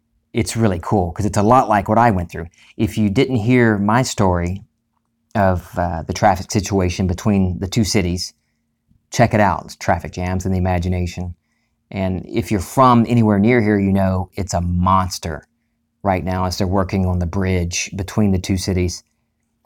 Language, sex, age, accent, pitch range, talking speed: English, male, 40-59, American, 90-110 Hz, 180 wpm